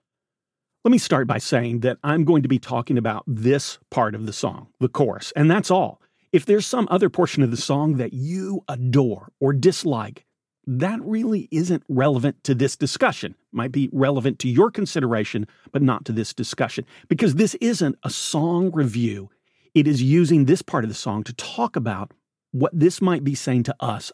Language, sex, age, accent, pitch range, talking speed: English, male, 40-59, American, 125-180 Hz, 190 wpm